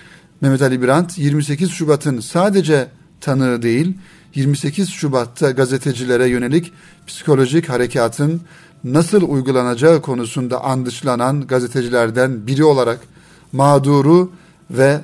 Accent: native